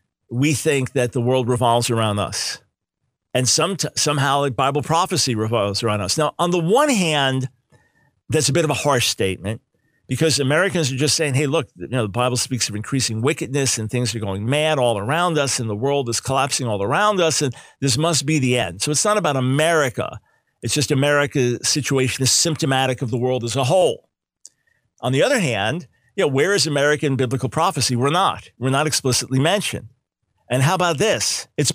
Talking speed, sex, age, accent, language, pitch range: 200 wpm, male, 50-69, American, English, 125-155 Hz